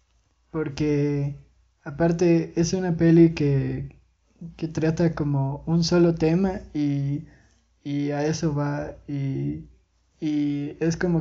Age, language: 20-39, Spanish